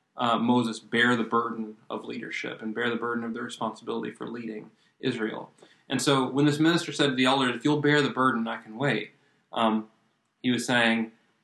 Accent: American